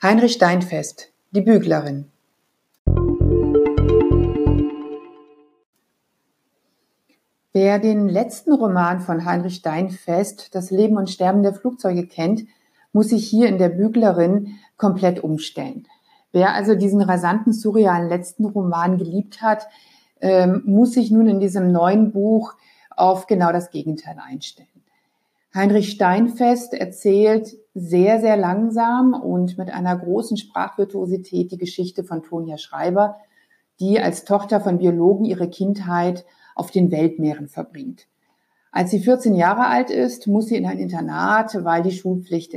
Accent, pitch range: German, 175-220 Hz